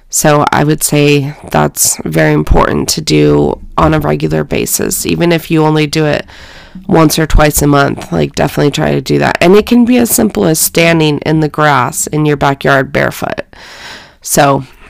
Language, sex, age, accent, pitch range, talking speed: English, female, 20-39, American, 140-170 Hz, 185 wpm